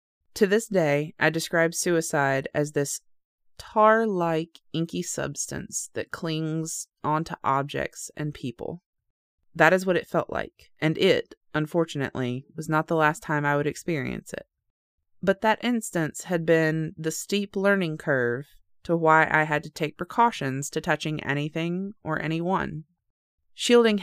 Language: English